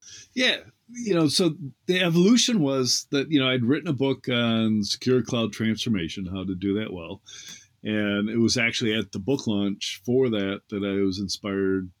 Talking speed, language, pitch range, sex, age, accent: 185 wpm, English, 100-125 Hz, male, 50-69, American